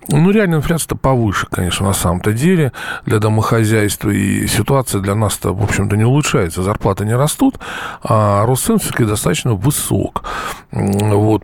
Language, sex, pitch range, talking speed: Russian, male, 105-150 Hz, 140 wpm